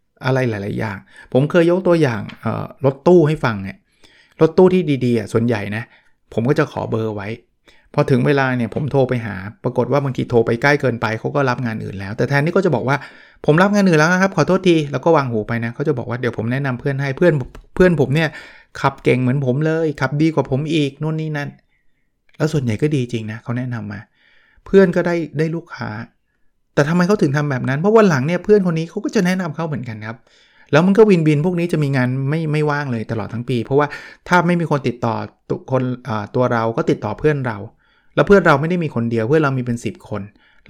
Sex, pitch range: male, 115-150 Hz